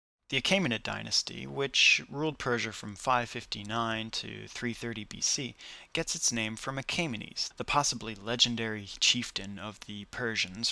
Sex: male